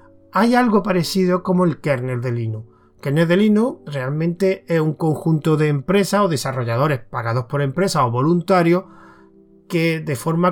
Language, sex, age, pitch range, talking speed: Spanish, male, 30-49, 125-175 Hz, 160 wpm